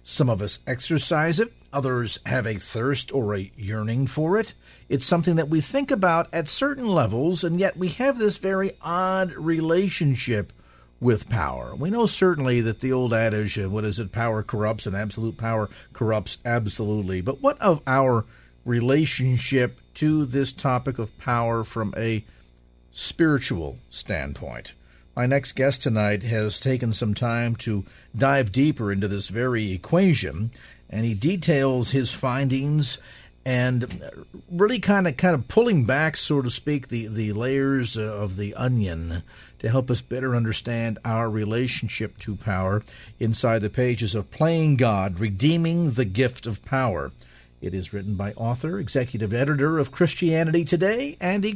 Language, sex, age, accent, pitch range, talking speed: English, male, 50-69, American, 105-155 Hz, 155 wpm